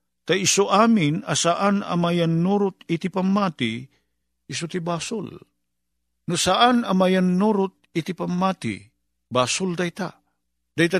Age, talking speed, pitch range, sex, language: 50-69, 110 wpm, 120-175 Hz, male, Filipino